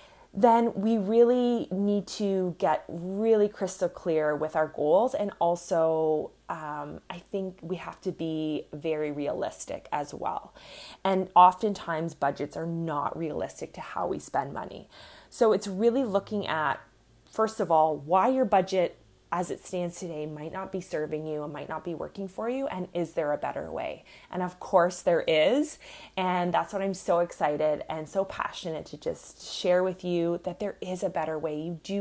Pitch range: 160-205 Hz